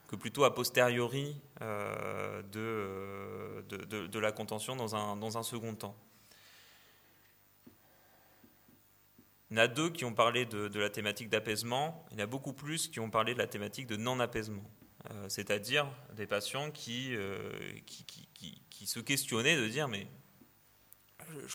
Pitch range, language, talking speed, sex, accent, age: 105-135 Hz, French, 165 wpm, male, French, 30-49